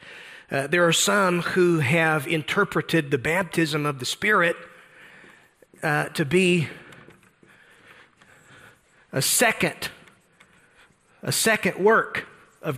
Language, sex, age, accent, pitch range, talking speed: English, male, 40-59, American, 155-200 Hz, 100 wpm